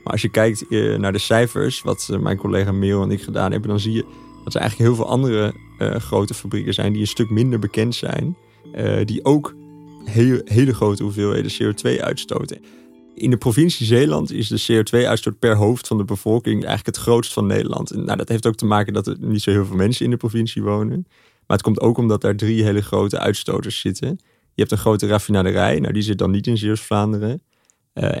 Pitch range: 105-120 Hz